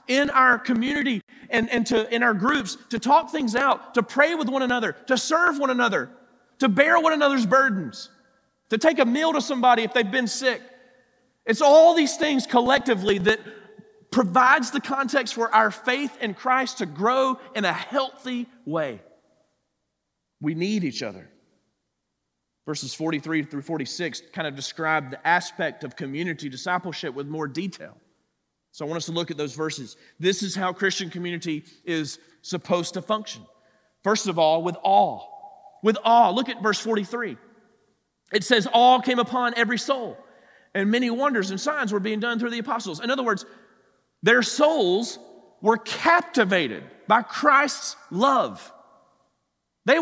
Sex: male